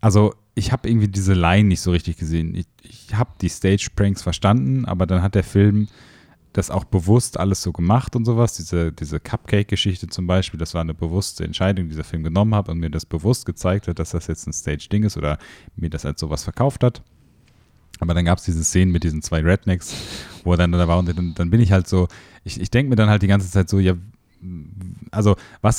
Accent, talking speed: German, 230 wpm